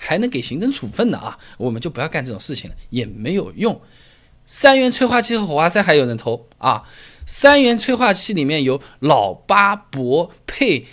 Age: 20-39